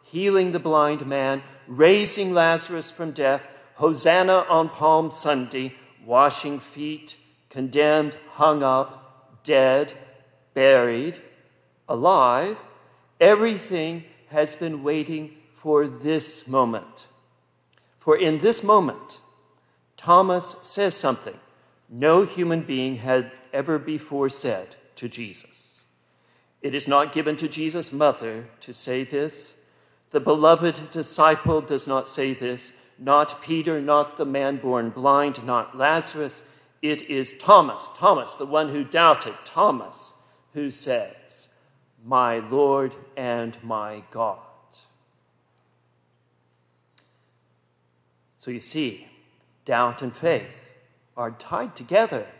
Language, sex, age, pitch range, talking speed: English, male, 50-69, 120-155 Hz, 110 wpm